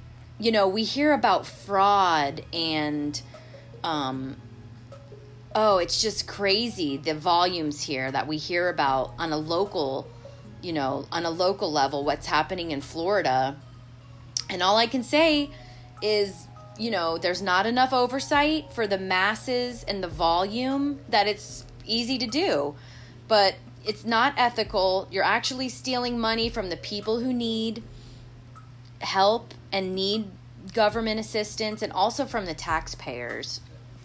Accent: American